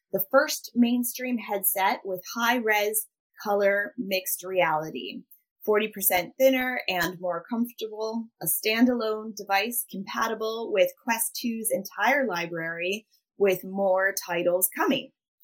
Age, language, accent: 10-29, English, American